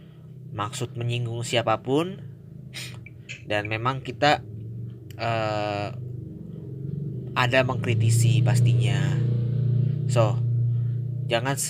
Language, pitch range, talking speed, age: Indonesian, 105-125 Hz, 60 wpm, 20-39